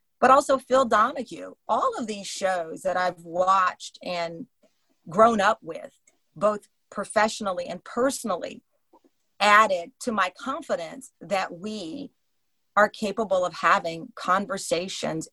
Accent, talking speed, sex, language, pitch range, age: American, 115 wpm, female, English, 185-245 Hz, 40-59